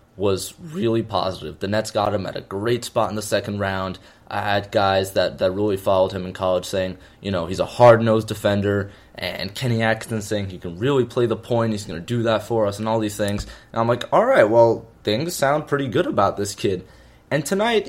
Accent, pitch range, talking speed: American, 100-130 Hz, 230 wpm